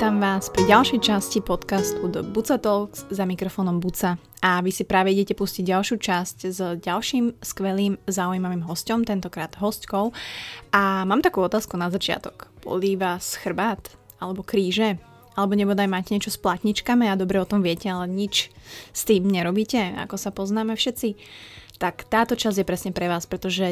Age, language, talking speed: 20-39, Slovak, 165 wpm